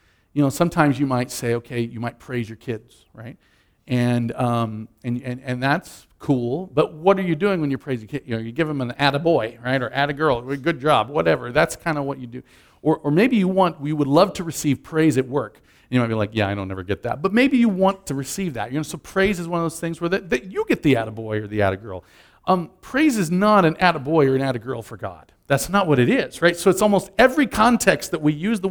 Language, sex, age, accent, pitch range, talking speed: English, male, 40-59, American, 115-170 Hz, 275 wpm